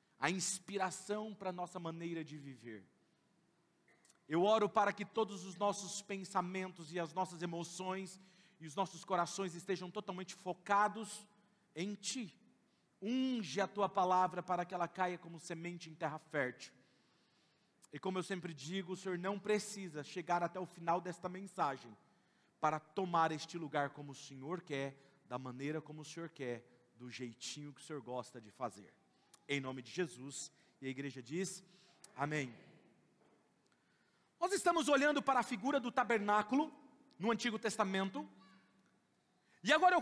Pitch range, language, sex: 170-265 Hz, Portuguese, male